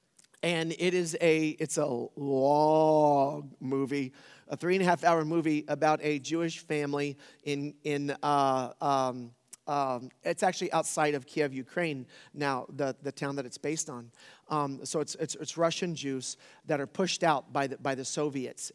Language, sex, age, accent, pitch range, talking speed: English, male, 40-59, American, 135-165 Hz, 175 wpm